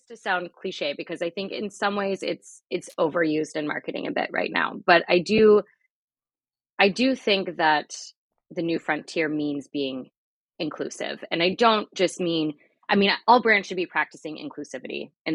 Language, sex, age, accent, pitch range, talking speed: English, female, 20-39, American, 150-195 Hz, 175 wpm